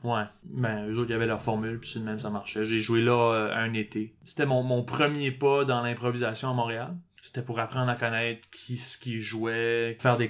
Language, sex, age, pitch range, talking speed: French, male, 20-39, 115-130 Hz, 225 wpm